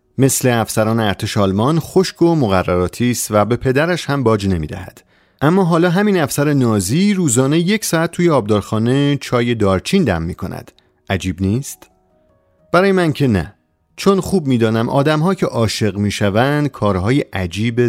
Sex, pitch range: male, 105-145 Hz